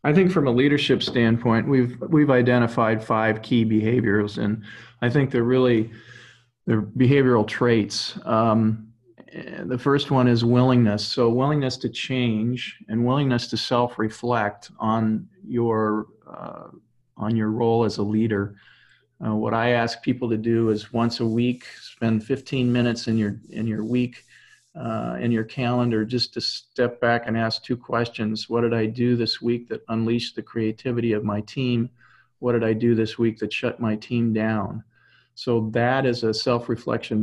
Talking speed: 170 wpm